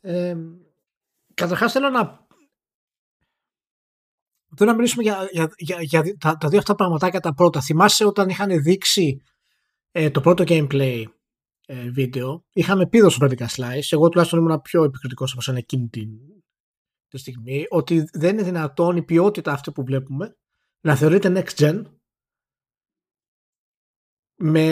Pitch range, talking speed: 145-200 Hz, 135 wpm